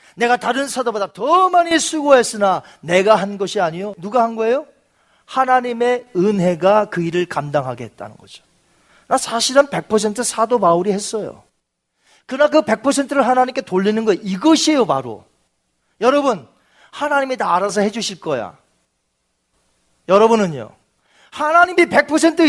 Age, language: 40-59, Korean